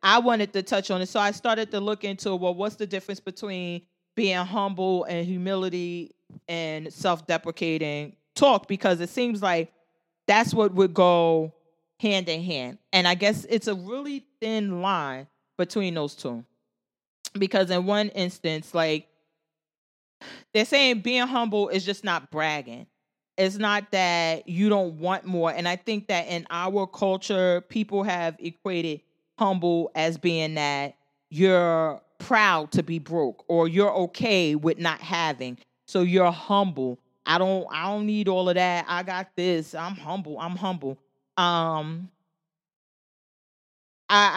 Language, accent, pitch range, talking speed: English, American, 165-200 Hz, 150 wpm